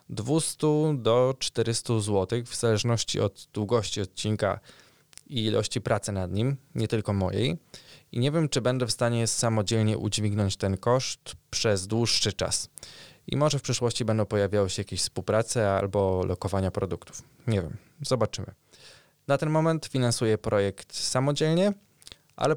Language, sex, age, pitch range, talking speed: Polish, male, 20-39, 100-130 Hz, 140 wpm